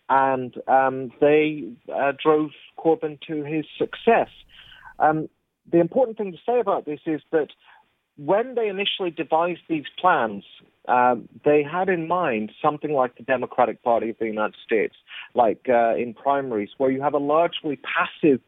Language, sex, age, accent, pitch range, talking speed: English, male, 40-59, British, 130-165 Hz, 160 wpm